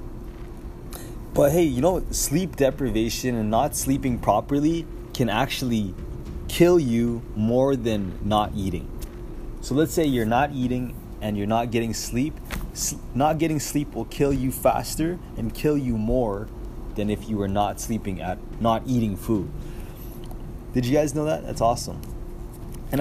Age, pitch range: 20-39, 115-135 Hz